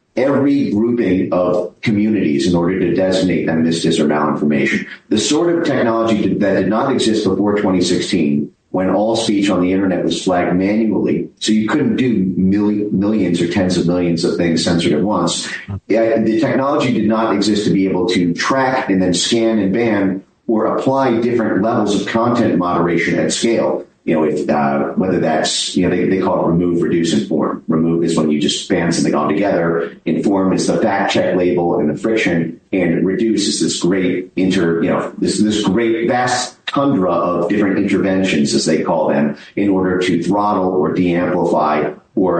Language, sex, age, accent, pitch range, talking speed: English, male, 40-59, American, 85-105 Hz, 185 wpm